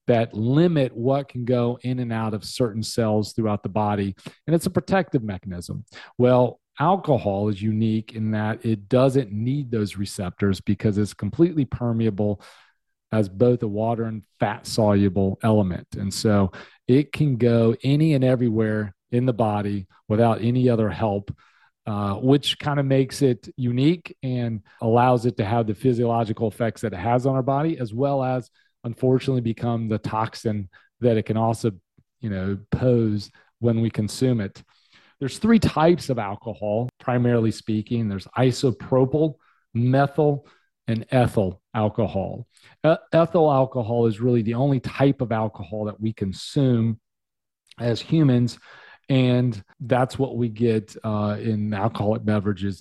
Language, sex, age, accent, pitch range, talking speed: English, male, 40-59, American, 105-130 Hz, 150 wpm